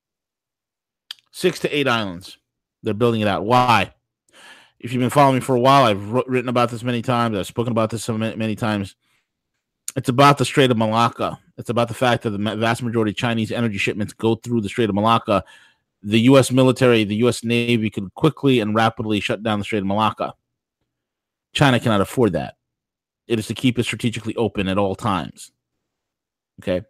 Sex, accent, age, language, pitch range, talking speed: male, American, 30-49, English, 105-125 Hz, 185 wpm